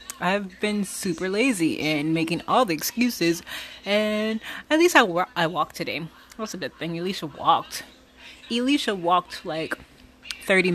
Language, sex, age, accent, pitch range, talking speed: English, female, 20-39, American, 160-230 Hz, 155 wpm